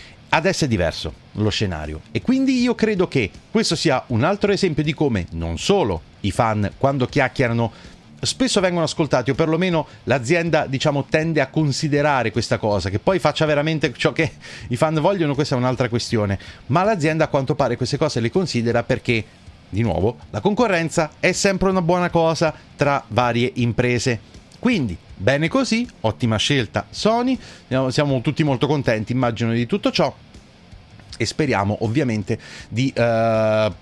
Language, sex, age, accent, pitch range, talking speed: Italian, male, 30-49, native, 110-155 Hz, 160 wpm